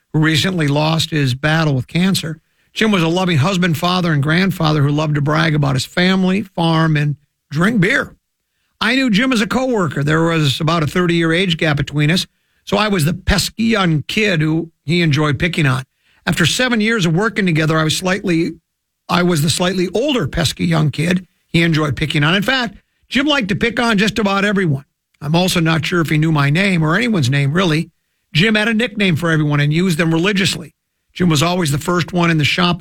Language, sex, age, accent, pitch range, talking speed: English, male, 50-69, American, 155-190 Hz, 210 wpm